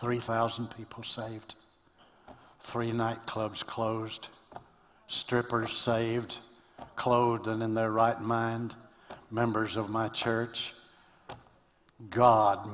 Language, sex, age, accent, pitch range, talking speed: English, male, 60-79, American, 85-115 Hz, 90 wpm